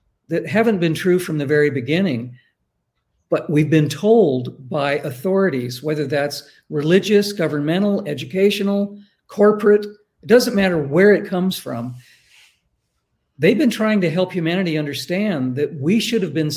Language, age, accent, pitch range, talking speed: English, 50-69, American, 145-190 Hz, 140 wpm